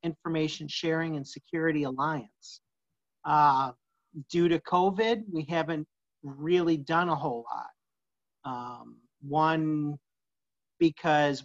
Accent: American